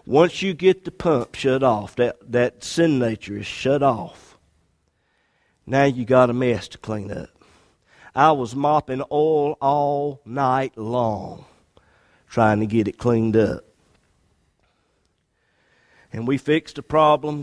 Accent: American